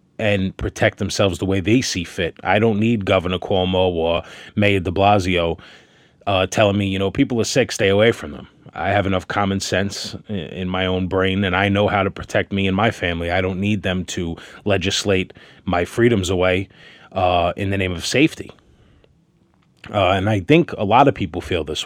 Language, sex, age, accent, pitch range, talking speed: English, male, 30-49, American, 95-105 Hz, 200 wpm